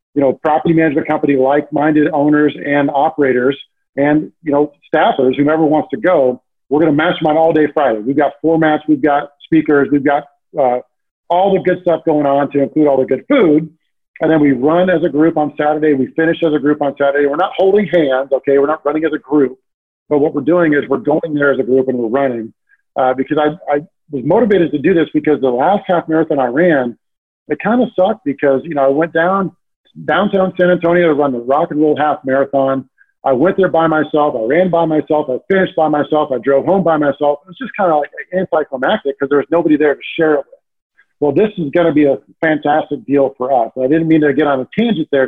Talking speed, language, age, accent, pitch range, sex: 235 wpm, English, 40-59, American, 140-165 Hz, male